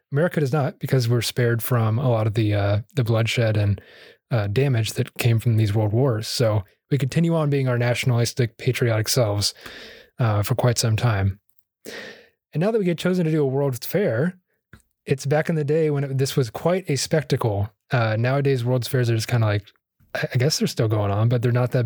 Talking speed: 215 wpm